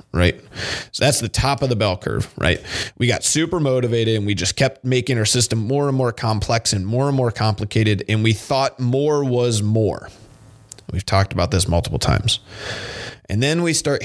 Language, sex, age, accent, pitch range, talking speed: English, male, 30-49, American, 95-120 Hz, 195 wpm